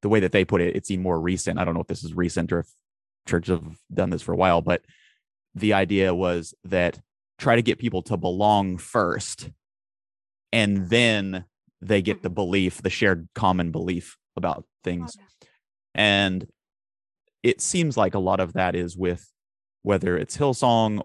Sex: male